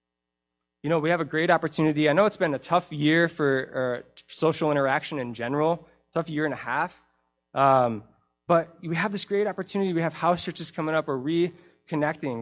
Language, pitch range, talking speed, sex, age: English, 110-170 Hz, 195 wpm, male, 20-39